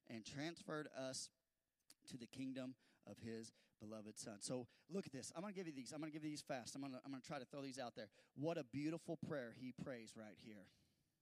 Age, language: 30-49, English